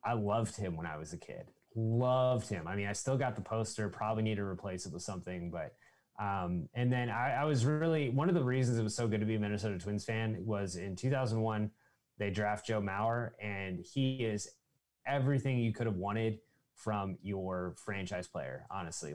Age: 20-39